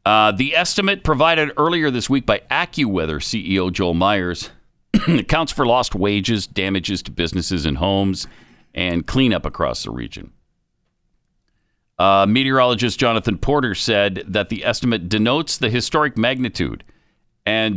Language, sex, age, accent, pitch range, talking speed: English, male, 50-69, American, 100-150 Hz, 130 wpm